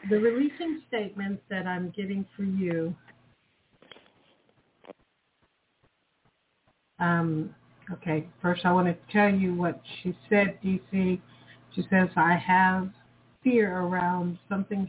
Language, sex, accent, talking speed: English, female, American, 110 wpm